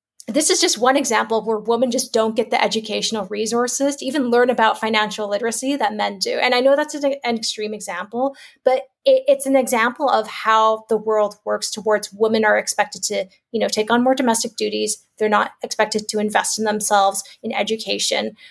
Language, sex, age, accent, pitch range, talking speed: English, female, 30-49, American, 215-270 Hz, 190 wpm